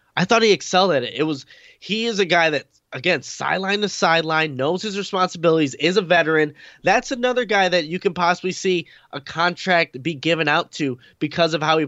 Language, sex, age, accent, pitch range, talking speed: English, male, 20-39, American, 140-180 Hz, 205 wpm